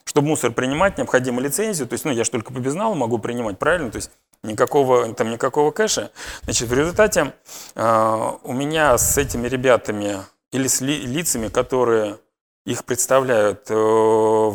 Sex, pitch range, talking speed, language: male, 110-145 Hz, 155 wpm, Russian